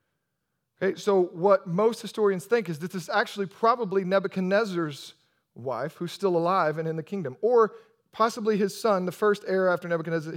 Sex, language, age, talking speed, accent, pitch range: male, English, 40-59, 175 wpm, American, 170-215 Hz